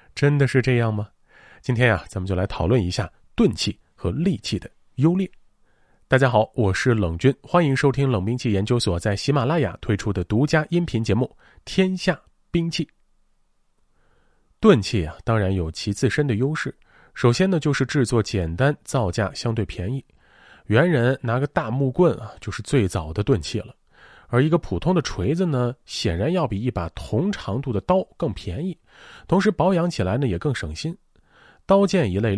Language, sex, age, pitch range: Chinese, male, 30-49, 100-145 Hz